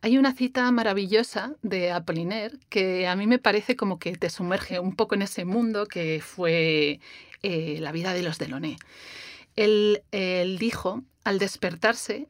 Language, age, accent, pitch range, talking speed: Spanish, 40-59, Spanish, 170-215 Hz, 160 wpm